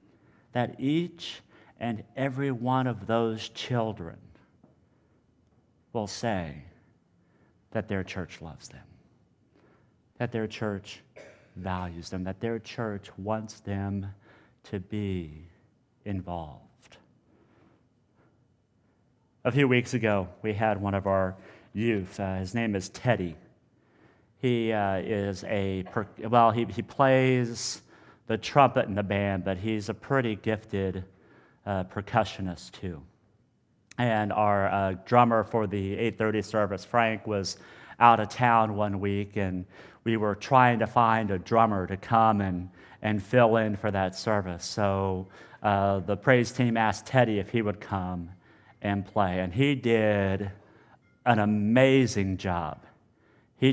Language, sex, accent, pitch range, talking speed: English, male, American, 95-115 Hz, 130 wpm